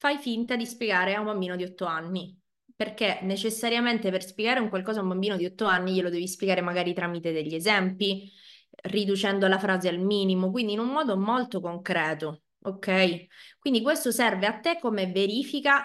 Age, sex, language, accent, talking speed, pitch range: 20-39, female, Italian, native, 180 wpm, 190-235 Hz